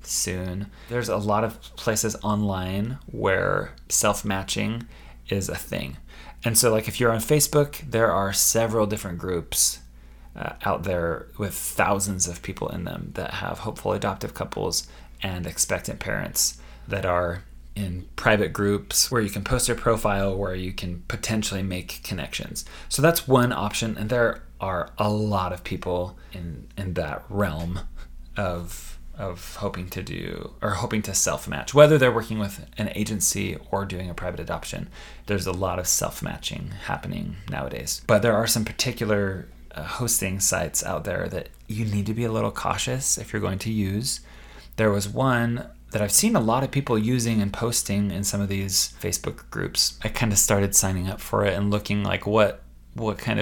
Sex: male